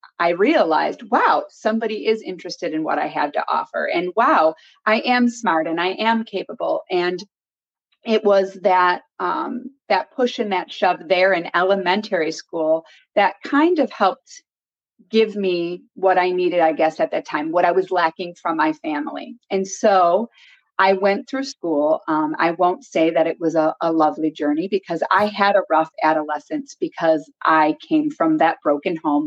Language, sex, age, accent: English, female, 30-49, American